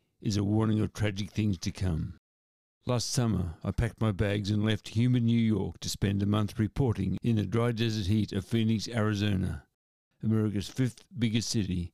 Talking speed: 180 wpm